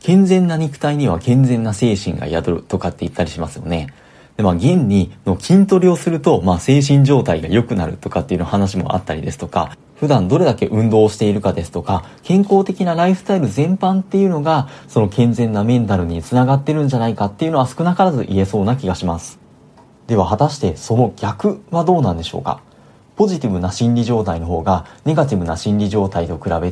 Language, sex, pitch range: Japanese, male, 95-150 Hz